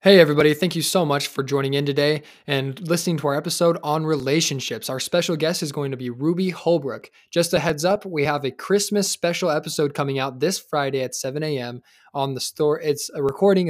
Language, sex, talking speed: English, male, 215 wpm